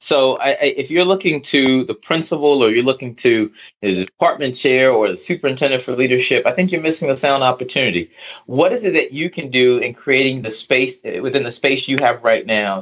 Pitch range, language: 110-140 Hz, English